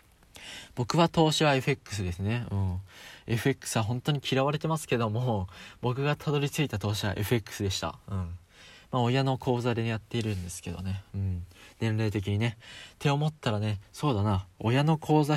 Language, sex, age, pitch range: Japanese, male, 20-39, 100-125 Hz